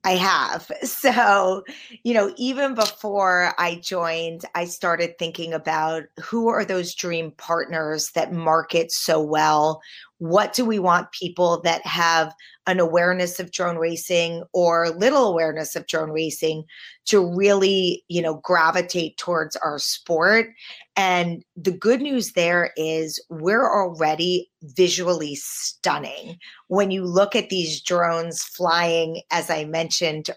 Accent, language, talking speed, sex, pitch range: American, English, 135 wpm, female, 165-190 Hz